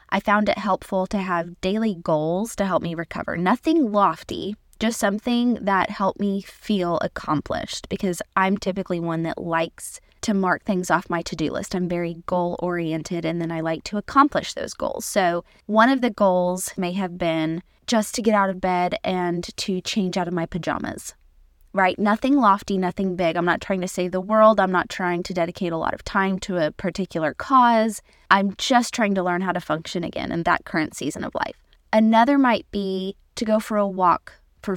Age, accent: 20-39, American